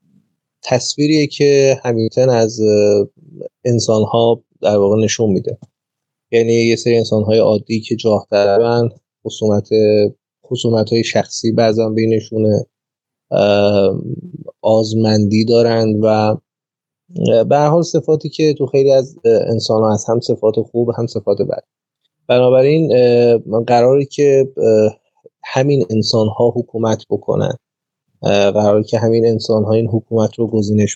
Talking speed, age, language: 120 wpm, 30-49, Persian